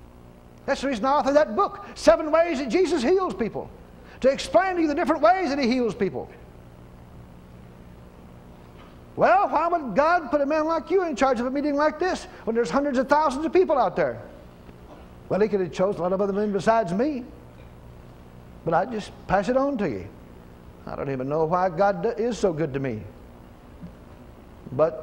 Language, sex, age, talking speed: English, male, 60-79, 190 wpm